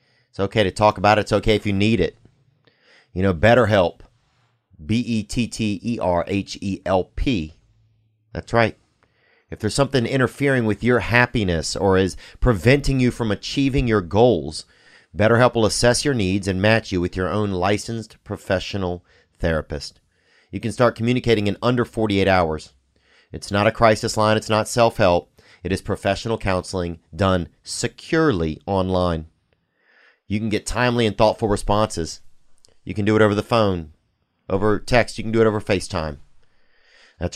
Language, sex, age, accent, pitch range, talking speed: English, male, 40-59, American, 95-115 Hz, 150 wpm